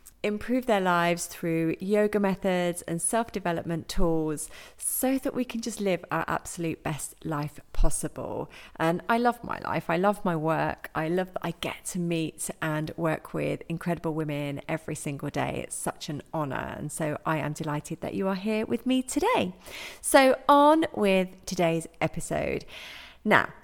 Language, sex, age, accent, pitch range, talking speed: English, female, 30-49, British, 160-215 Hz, 170 wpm